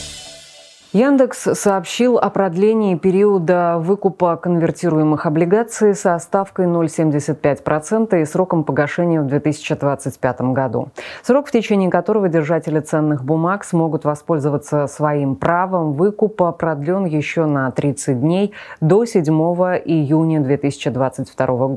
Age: 20-39